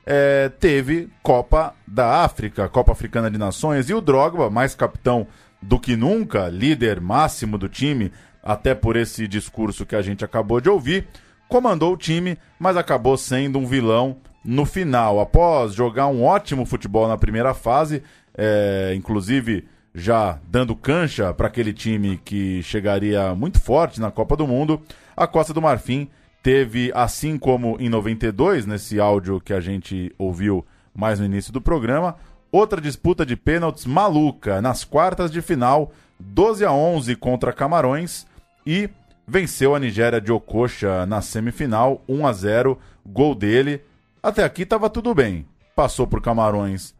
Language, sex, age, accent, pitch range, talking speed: Portuguese, male, 20-39, Brazilian, 105-140 Hz, 150 wpm